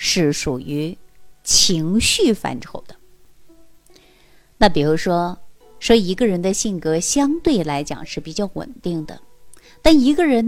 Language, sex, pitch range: Chinese, female, 155-225 Hz